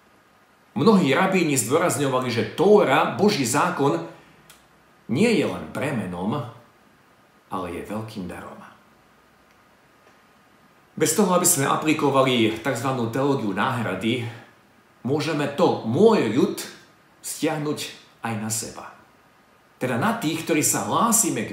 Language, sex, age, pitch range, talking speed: Slovak, male, 50-69, 125-210 Hz, 105 wpm